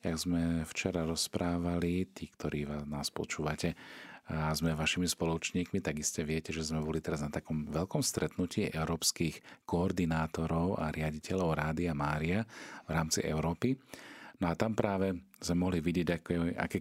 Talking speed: 145 wpm